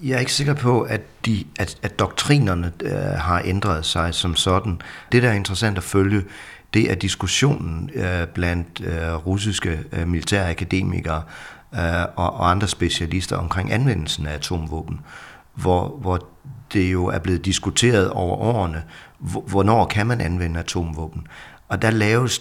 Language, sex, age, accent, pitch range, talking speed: Danish, male, 40-59, native, 85-105 Hz, 160 wpm